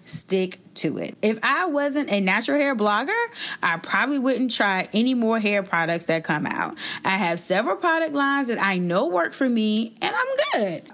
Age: 30-49